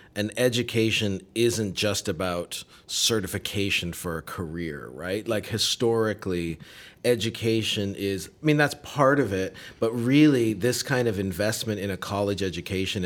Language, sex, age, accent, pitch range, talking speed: English, male, 40-59, American, 95-115 Hz, 140 wpm